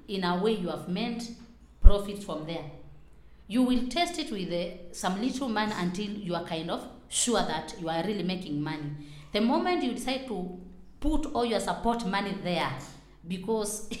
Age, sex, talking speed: 30-49, female, 180 wpm